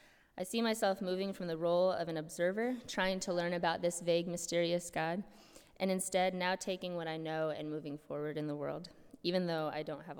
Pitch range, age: 155-185 Hz, 20-39